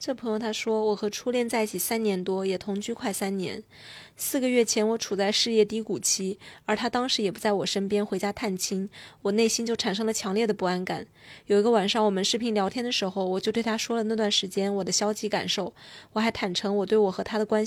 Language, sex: Chinese, female